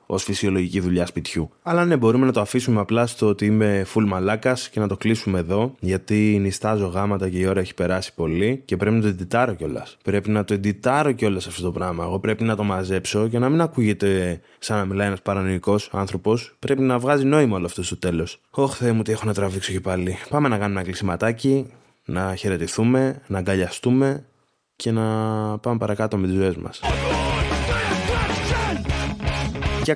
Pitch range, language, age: 95-135 Hz, Greek, 20-39